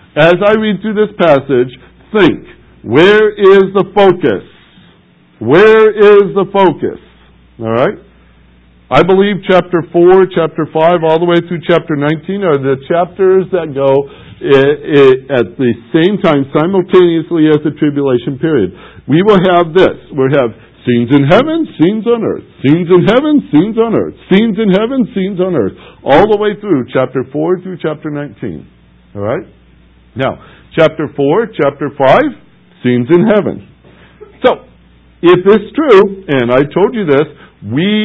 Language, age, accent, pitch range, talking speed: English, 60-79, American, 140-195 Hz, 150 wpm